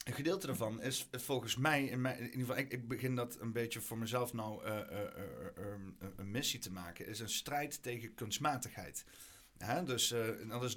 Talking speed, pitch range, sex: 205 wpm, 105-125 Hz, male